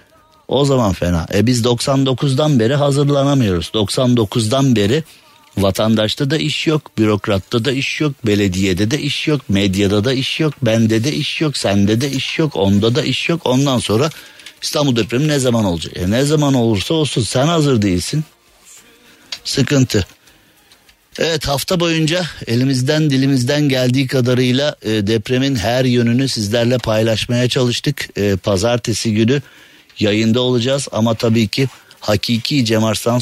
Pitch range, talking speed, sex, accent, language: 100-130 Hz, 135 wpm, male, native, Turkish